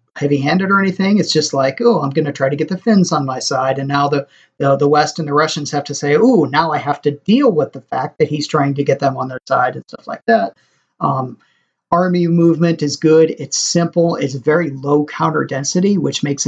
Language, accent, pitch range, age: English, American, 145-165 Hz, 40-59